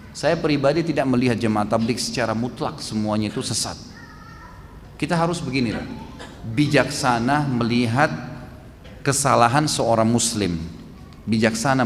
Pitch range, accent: 105-130 Hz, native